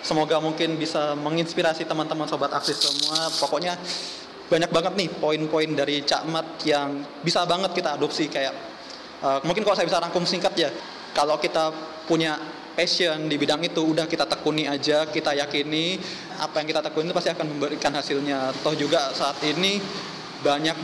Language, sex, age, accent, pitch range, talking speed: Indonesian, male, 20-39, native, 150-170 Hz, 160 wpm